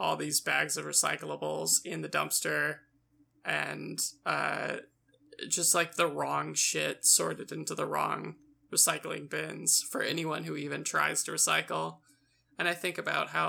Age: 20-39